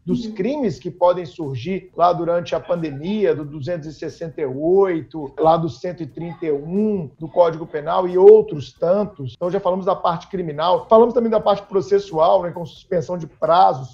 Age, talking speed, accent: 50-69, 155 wpm, Brazilian